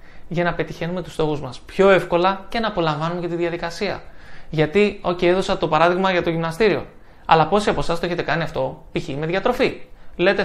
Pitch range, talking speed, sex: 165-200 Hz, 200 wpm, male